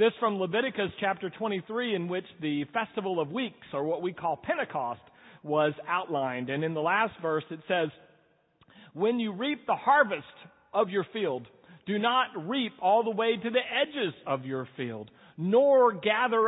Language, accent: English, American